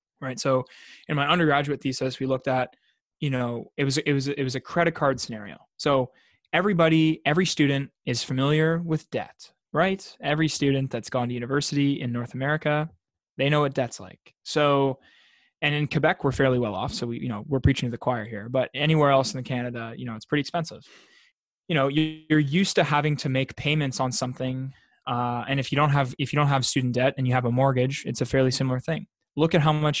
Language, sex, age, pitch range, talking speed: English, male, 20-39, 130-155 Hz, 220 wpm